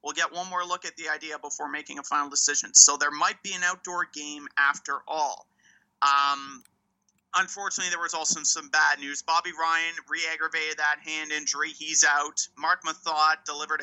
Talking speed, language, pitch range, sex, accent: 180 wpm, English, 150-180 Hz, male, American